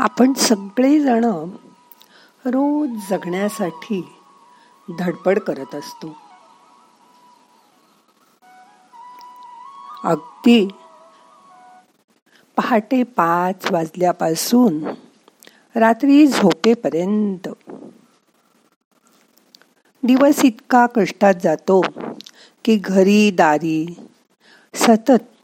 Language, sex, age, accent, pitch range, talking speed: Marathi, female, 50-69, native, 175-245 Hz, 50 wpm